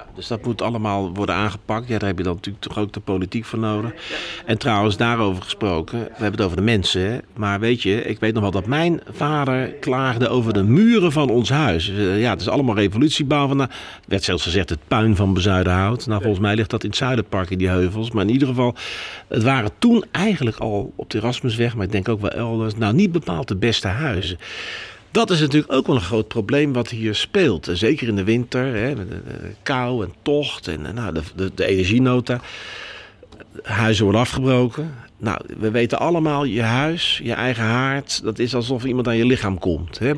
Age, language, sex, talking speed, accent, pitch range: 50-69, Dutch, male, 215 wpm, Dutch, 105-140 Hz